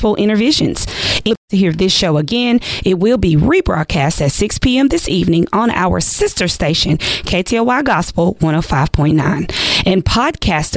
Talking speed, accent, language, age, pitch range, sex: 145 wpm, American, English, 20-39, 165-220 Hz, female